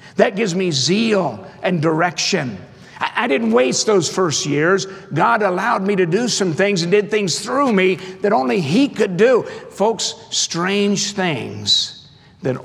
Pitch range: 135-180 Hz